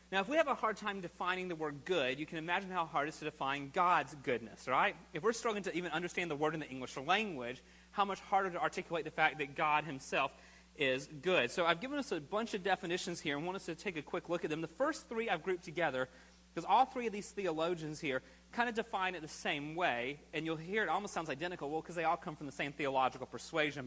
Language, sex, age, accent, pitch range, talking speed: English, male, 30-49, American, 140-185 Hz, 260 wpm